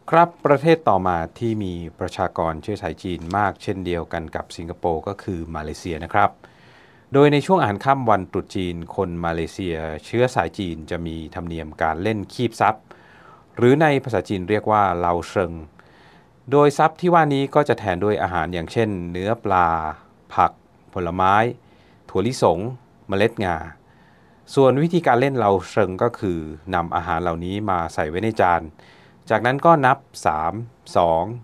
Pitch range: 85-120 Hz